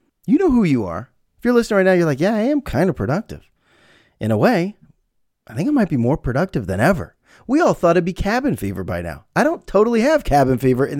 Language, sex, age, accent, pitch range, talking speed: English, male, 30-49, American, 110-185 Hz, 250 wpm